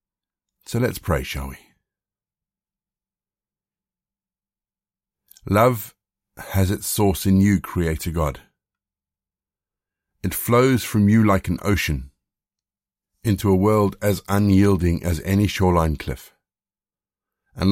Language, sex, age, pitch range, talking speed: English, male, 50-69, 85-100 Hz, 100 wpm